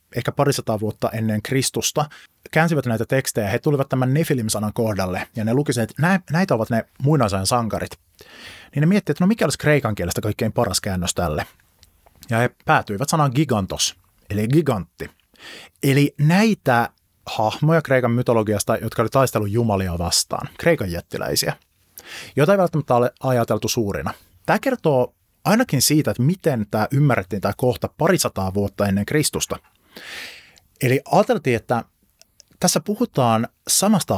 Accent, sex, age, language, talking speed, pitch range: native, male, 30-49, Finnish, 140 wpm, 105-140 Hz